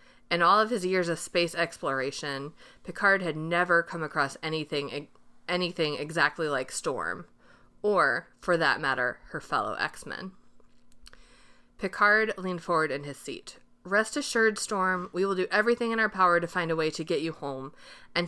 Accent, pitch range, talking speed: American, 150-195 Hz, 165 wpm